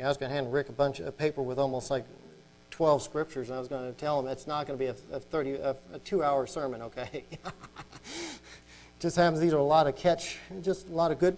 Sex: male